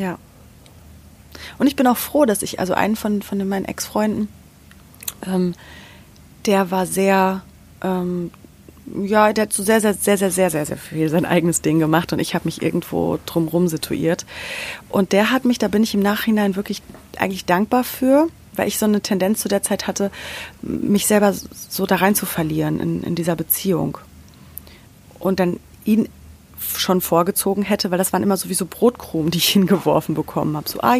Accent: German